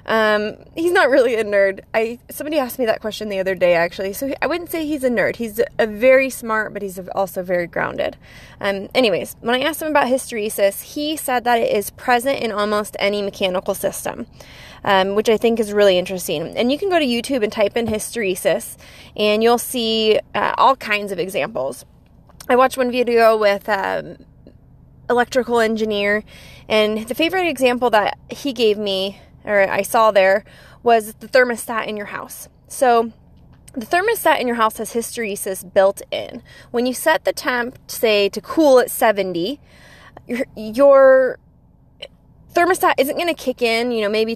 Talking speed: 175 wpm